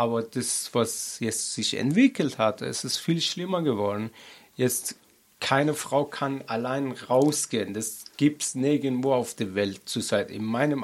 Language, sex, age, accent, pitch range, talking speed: German, male, 40-59, German, 120-150 Hz, 155 wpm